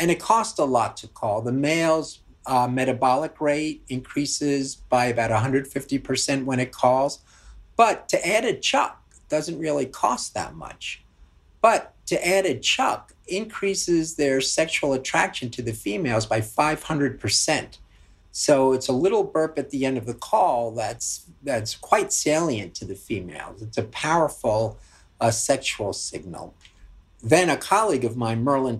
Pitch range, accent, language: 110-140 Hz, American, English